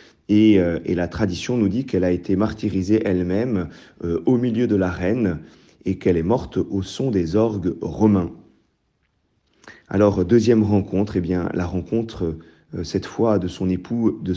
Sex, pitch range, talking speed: male, 95-110 Hz, 150 wpm